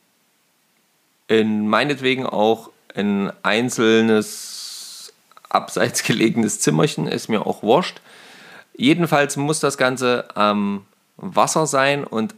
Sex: male